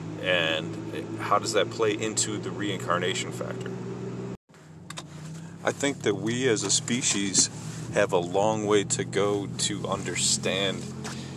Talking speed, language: 125 wpm, English